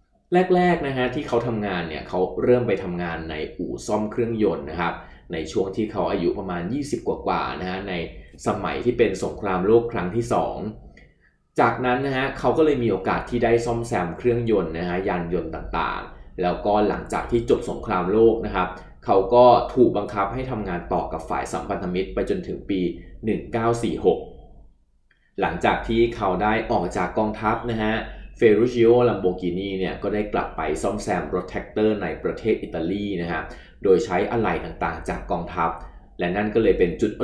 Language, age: Thai, 20-39